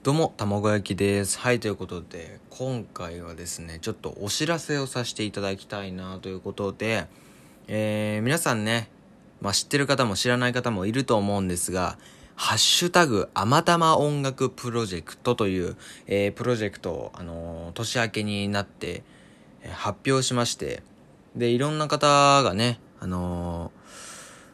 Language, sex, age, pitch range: Japanese, male, 20-39, 95-125 Hz